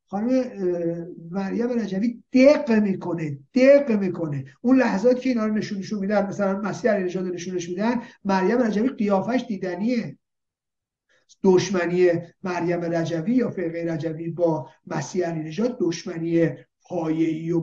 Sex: male